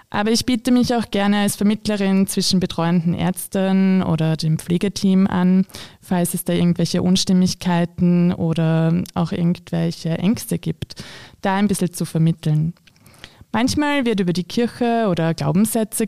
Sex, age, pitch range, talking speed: female, 20-39, 175-225 Hz, 140 wpm